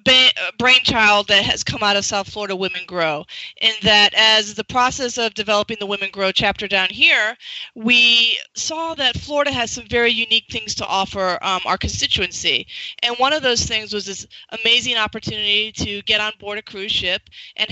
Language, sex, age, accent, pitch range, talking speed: English, female, 30-49, American, 205-235 Hz, 185 wpm